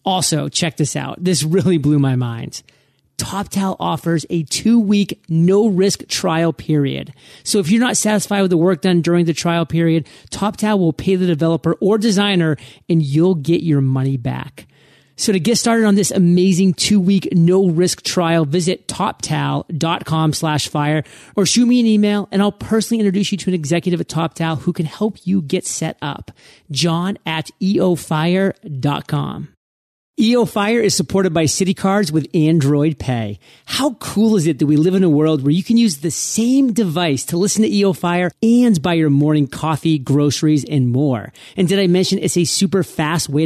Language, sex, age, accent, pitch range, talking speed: English, male, 30-49, American, 155-195 Hz, 180 wpm